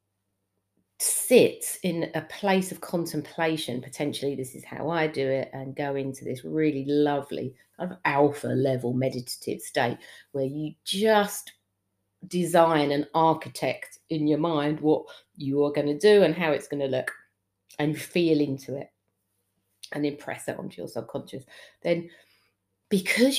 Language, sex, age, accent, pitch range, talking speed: English, female, 40-59, British, 125-165 Hz, 150 wpm